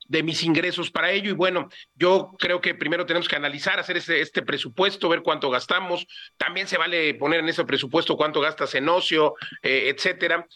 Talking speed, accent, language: 195 wpm, Mexican, Spanish